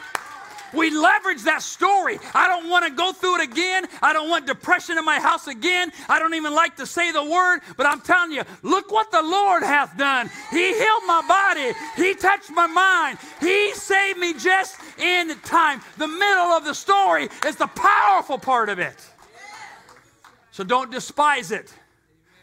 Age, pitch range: 50-69, 220-340 Hz